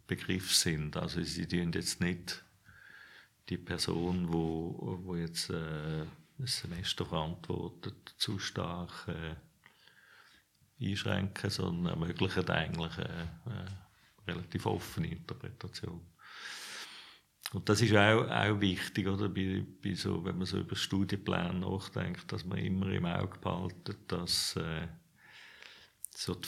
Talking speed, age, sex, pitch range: 125 wpm, 50-69, male, 85-95 Hz